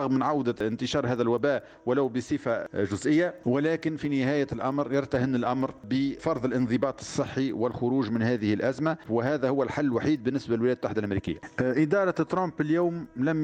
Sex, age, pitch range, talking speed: male, 50-69, 115-140 Hz, 145 wpm